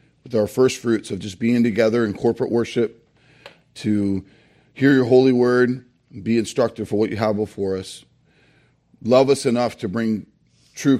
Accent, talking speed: American, 165 wpm